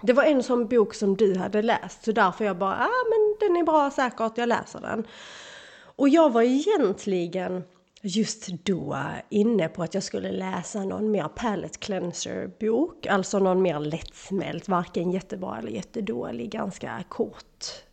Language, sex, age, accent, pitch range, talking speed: Swedish, female, 30-49, native, 185-235 Hz, 165 wpm